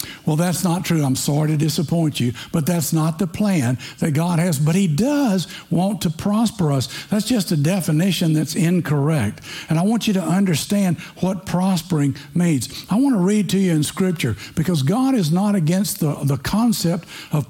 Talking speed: 190 wpm